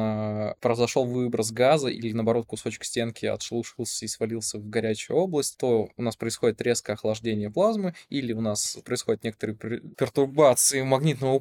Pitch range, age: 110-130 Hz, 20-39